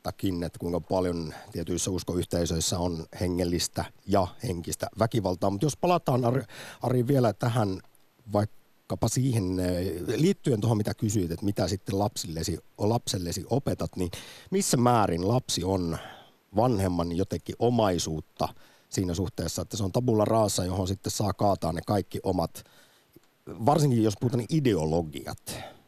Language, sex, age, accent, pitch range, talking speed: Finnish, male, 50-69, native, 95-125 Hz, 130 wpm